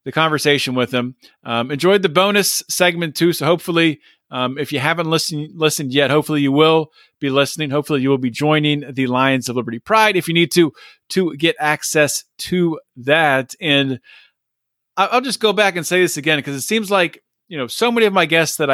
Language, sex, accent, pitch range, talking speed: English, male, American, 140-180 Hz, 205 wpm